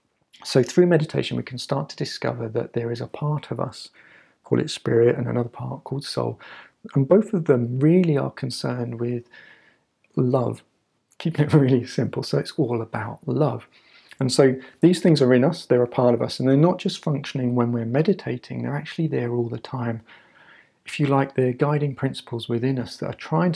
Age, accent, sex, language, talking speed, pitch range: 40-59, British, male, English, 200 wpm, 120-140 Hz